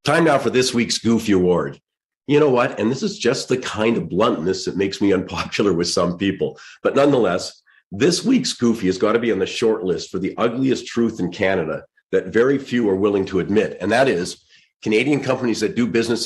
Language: English